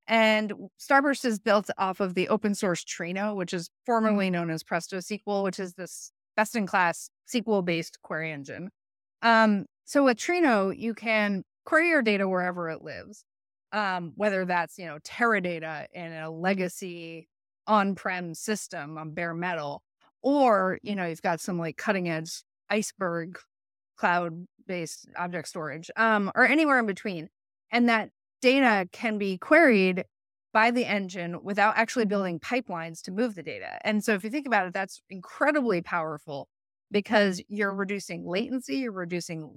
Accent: American